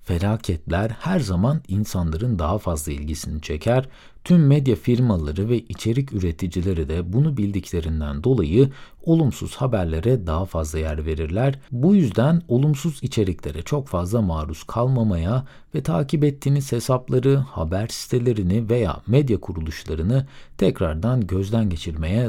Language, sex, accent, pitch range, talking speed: Turkish, male, native, 85-135 Hz, 120 wpm